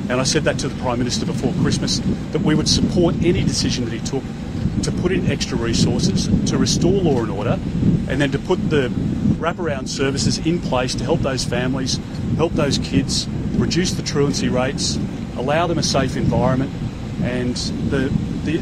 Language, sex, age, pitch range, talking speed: Tamil, male, 40-59, 225-275 Hz, 185 wpm